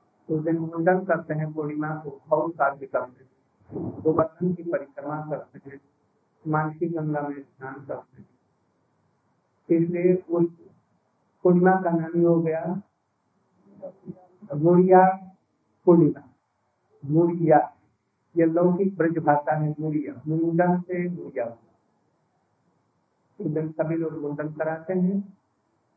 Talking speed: 95 wpm